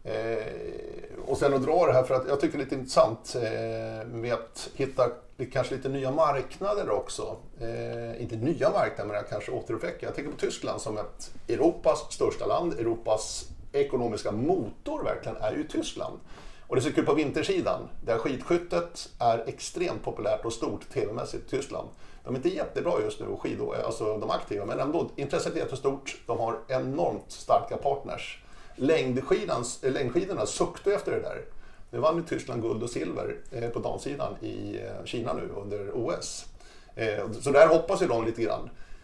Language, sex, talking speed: Swedish, male, 175 wpm